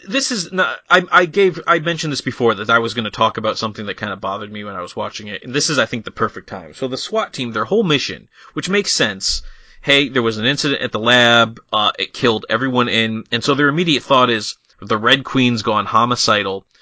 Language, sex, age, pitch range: English, male, 30-49, 115-160 Hz